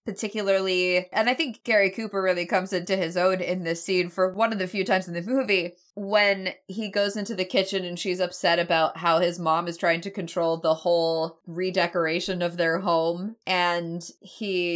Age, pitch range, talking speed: 20-39, 170-200 Hz, 195 wpm